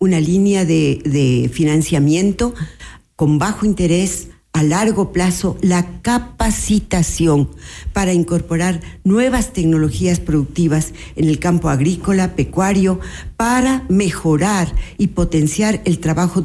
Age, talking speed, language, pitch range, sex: 50-69, 105 wpm, Spanish, 160-210 Hz, female